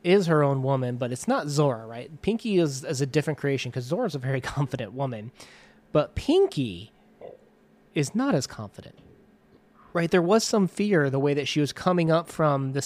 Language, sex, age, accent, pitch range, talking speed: English, male, 30-49, American, 135-185 Hz, 190 wpm